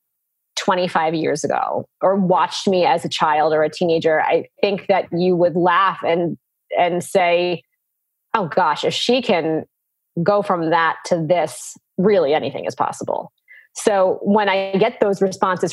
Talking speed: 155 wpm